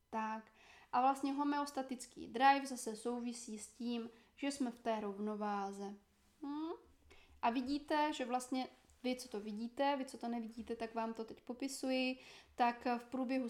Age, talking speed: 20-39, 145 wpm